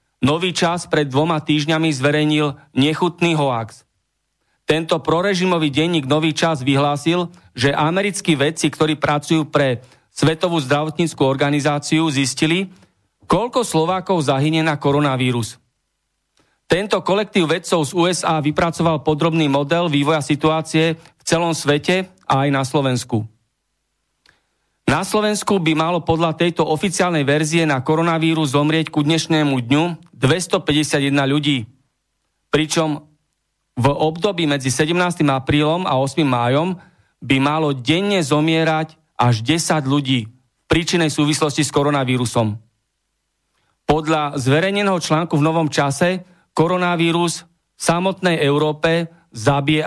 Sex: male